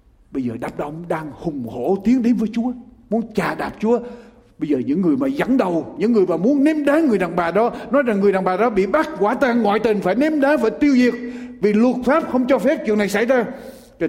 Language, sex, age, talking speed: Vietnamese, male, 60-79, 260 wpm